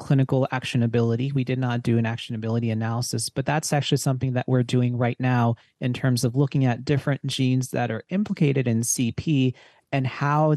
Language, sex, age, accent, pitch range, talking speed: English, male, 30-49, American, 120-135 Hz, 180 wpm